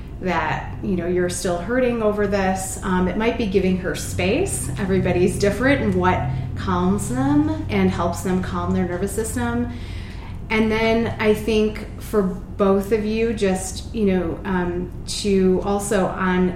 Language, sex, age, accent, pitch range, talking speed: English, female, 30-49, American, 180-210 Hz, 155 wpm